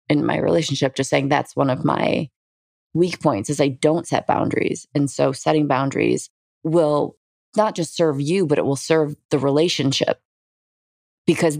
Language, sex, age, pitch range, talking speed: English, female, 20-39, 140-160 Hz, 165 wpm